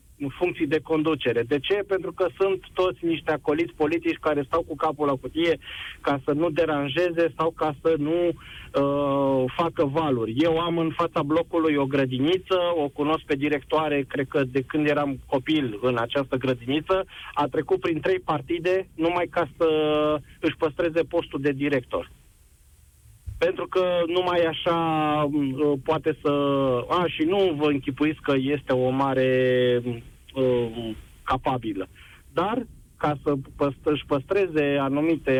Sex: male